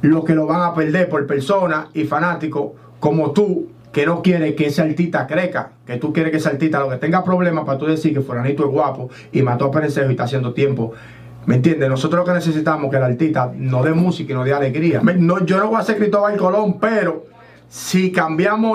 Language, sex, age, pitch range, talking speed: Spanish, male, 30-49, 150-185 Hz, 235 wpm